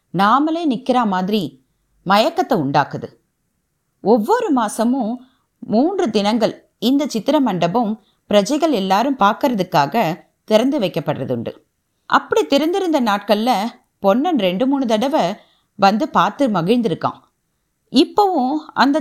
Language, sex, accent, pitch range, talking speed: Tamil, female, native, 195-280 Hz, 95 wpm